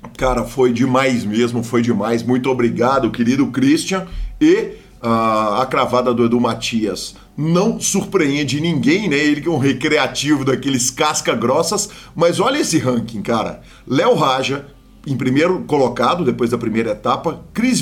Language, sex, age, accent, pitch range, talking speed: Portuguese, male, 50-69, Brazilian, 125-195 Hz, 140 wpm